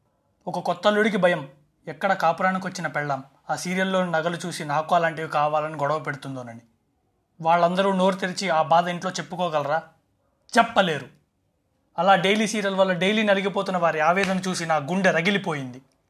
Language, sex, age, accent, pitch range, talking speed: Telugu, male, 30-49, native, 160-210 Hz, 135 wpm